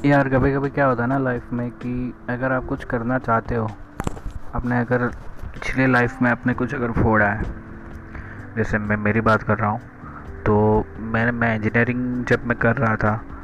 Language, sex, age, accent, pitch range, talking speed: Hindi, male, 20-39, native, 105-125 Hz, 190 wpm